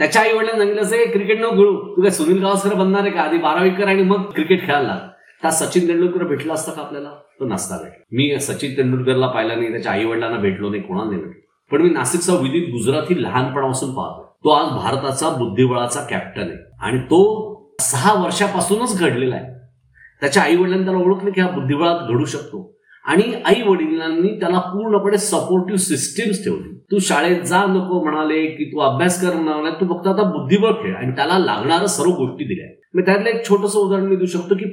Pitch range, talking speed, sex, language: 150-200 Hz, 155 wpm, male, Marathi